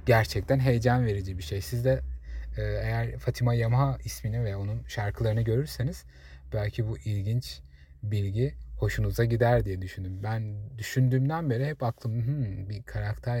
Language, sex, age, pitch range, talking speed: Turkish, male, 30-49, 95-125 Hz, 135 wpm